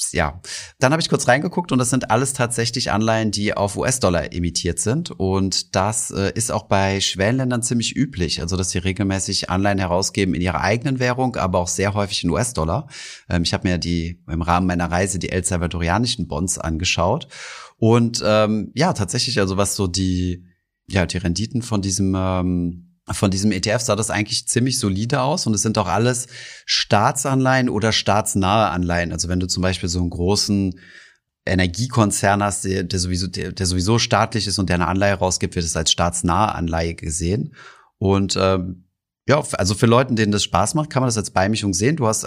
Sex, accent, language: male, German, German